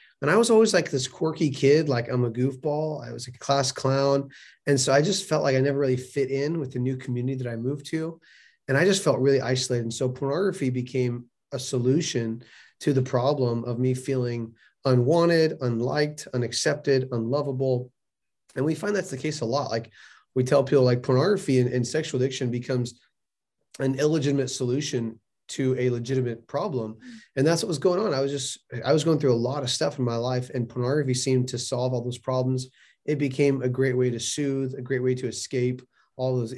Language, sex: English, male